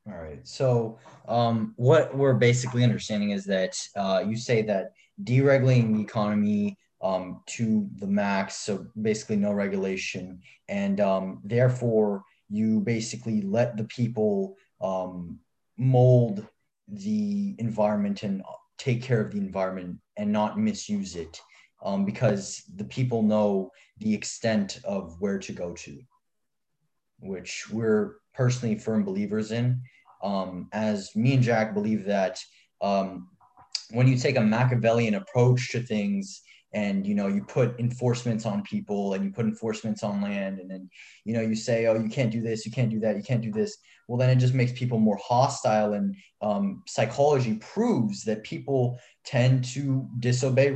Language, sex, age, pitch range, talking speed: English, male, 20-39, 105-130 Hz, 155 wpm